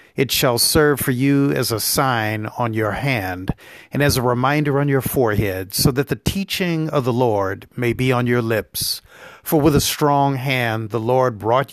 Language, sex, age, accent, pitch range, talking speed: English, male, 50-69, American, 120-140 Hz, 195 wpm